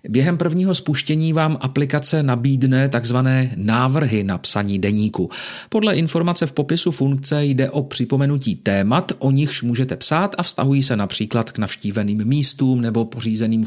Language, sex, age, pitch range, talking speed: Czech, male, 40-59, 115-145 Hz, 145 wpm